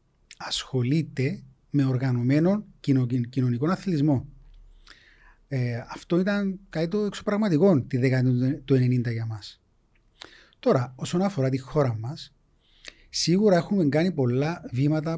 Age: 30-49